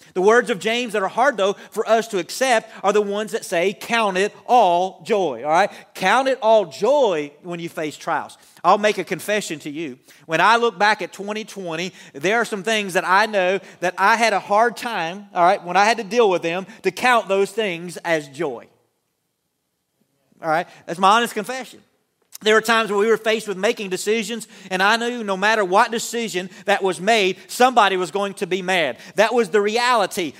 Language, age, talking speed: English, 40-59, 210 wpm